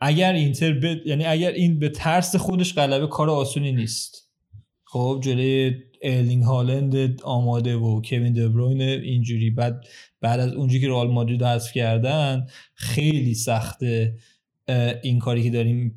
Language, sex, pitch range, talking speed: Persian, male, 125-160 Hz, 140 wpm